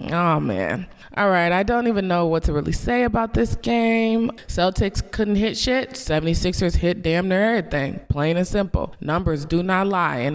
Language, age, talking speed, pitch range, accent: English, 20-39, 185 wpm, 170-215 Hz, American